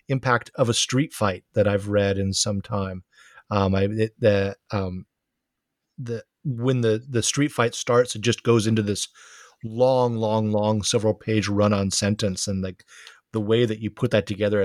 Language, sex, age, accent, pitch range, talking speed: English, male, 30-49, American, 105-135 Hz, 185 wpm